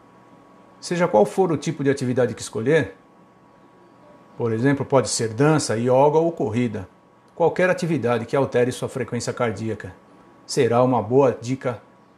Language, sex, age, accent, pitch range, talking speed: Portuguese, male, 60-79, Brazilian, 125-155 Hz, 140 wpm